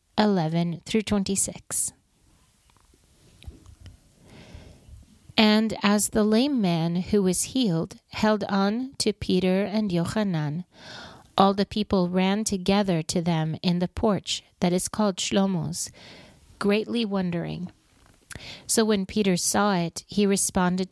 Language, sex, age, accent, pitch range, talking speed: English, female, 40-59, American, 175-210 Hz, 115 wpm